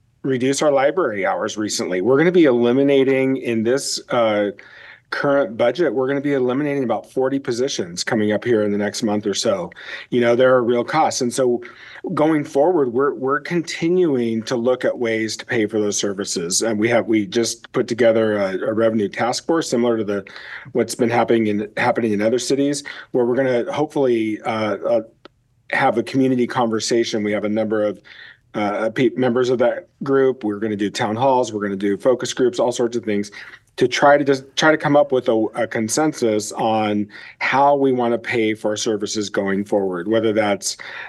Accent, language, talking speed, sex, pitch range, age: American, English, 205 wpm, male, 105-135 Hz, 40-59